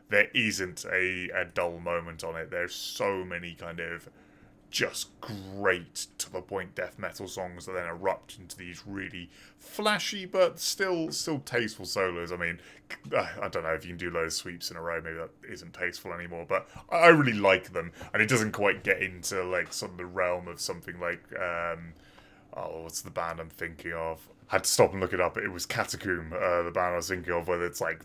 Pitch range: 85-105 Hz